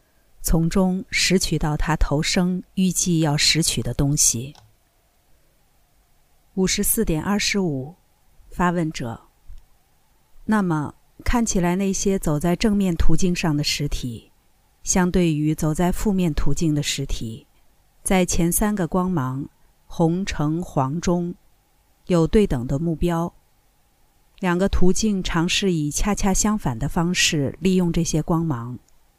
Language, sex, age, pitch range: Chinese, female, 50-69, 140-185 Hz